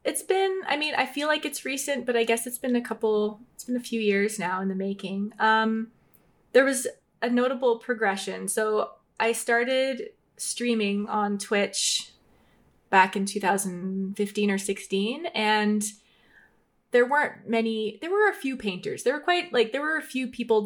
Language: English